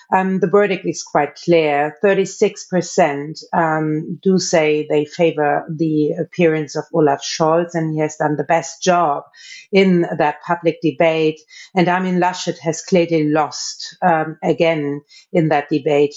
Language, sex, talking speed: English, female, 145 wpm